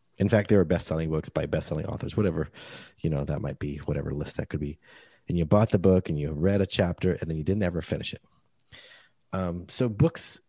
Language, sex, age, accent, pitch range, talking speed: English, male, 30-49, American, 85-120 Hz, 230 wpm